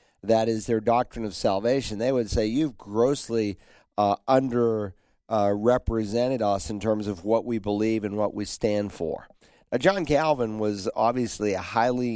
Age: 50-69